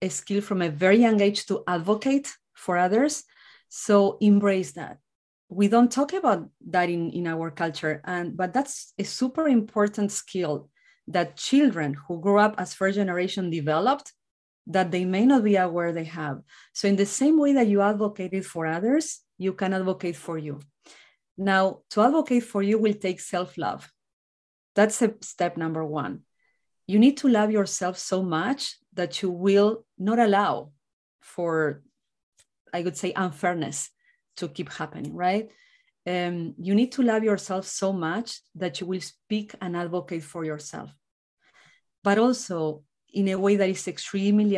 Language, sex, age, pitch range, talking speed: English, female, 30-49, 175-210 Hz, 160 wpm